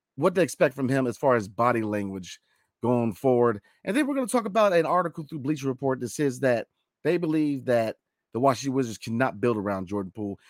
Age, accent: 40-59, American